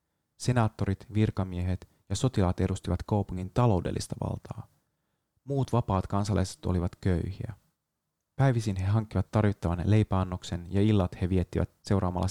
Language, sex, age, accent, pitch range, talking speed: Finnish, male, 30-49, native, 90-110 Hz, 110 wpm